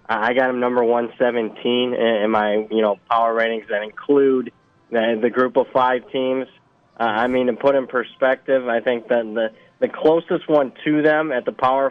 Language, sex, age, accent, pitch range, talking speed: English, male, 20-39, American, 115-135 Hz, 185 wpm